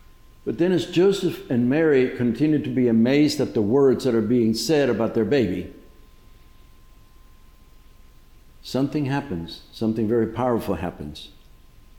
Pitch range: 115-140 Hz